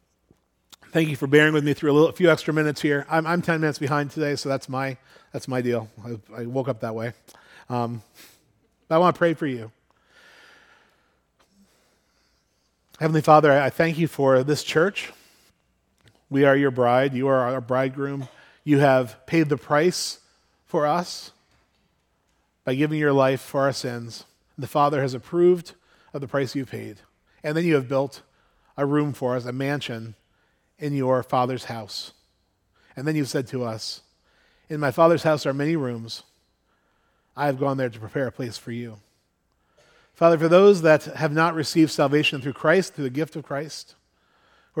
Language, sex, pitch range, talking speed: English, male, 125-150 Hz, 175 wpm